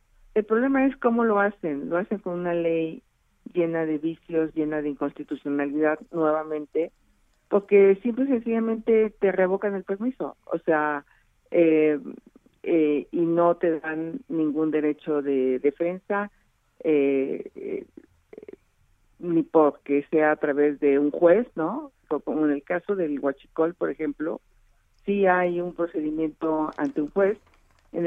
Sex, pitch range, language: female, 155-195 Hz, Spanish